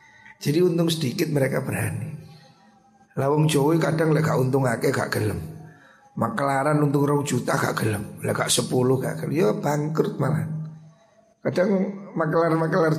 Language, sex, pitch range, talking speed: Indonesian, male, 140-170 Hz, 130 wpm